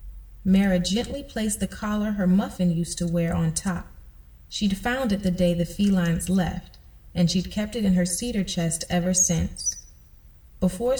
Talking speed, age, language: 170 wpm, 30-49, English